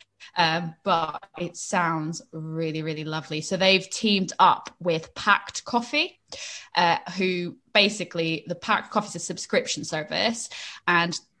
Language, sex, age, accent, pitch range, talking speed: English, female, 20-39, British, 165-200 Hz, 130 wpm